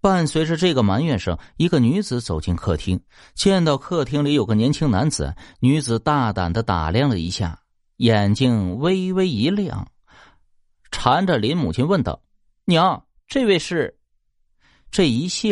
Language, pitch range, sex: Chinese, 90-145 Hz, male